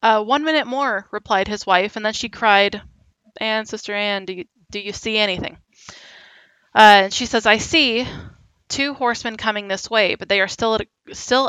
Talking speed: 170 wpm